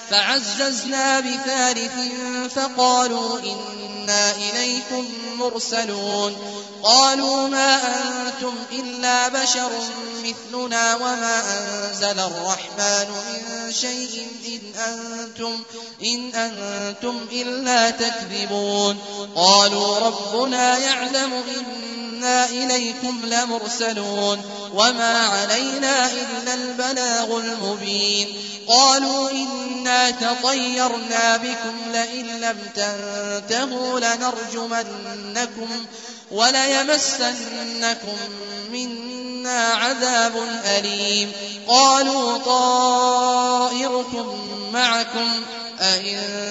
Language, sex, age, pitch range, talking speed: Arabic, male, 30-49, 210-250 Hz, 65 wpm